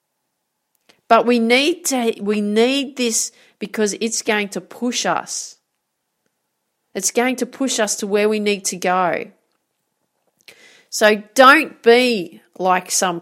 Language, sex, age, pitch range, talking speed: English, female, 40-59, 175-220 Hz, 130 wpm